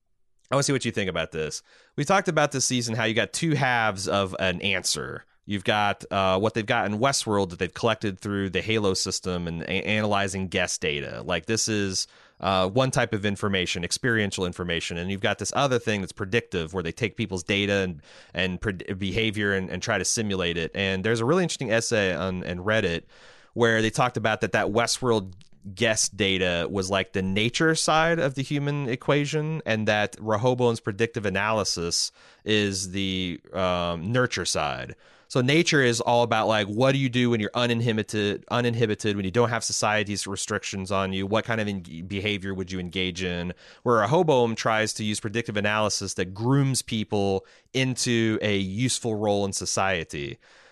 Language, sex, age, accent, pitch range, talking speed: English, male, 30-49, American, 95-120 Hz, 185 wpm